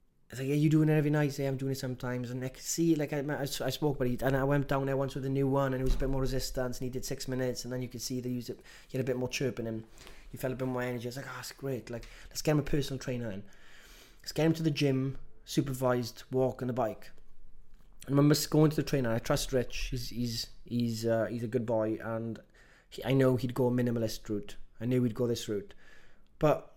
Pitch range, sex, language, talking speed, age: 115-135 Hz, male, English, 285 wpm, 20-39